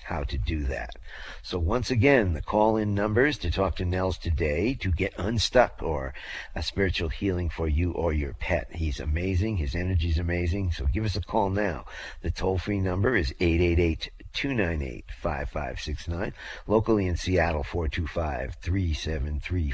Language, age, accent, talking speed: English, 50-69, American, 185 wpm